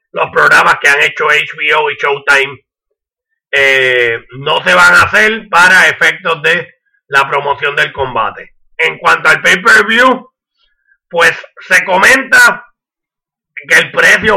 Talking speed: 130 wpm